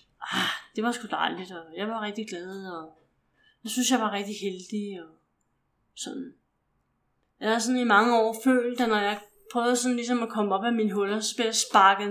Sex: female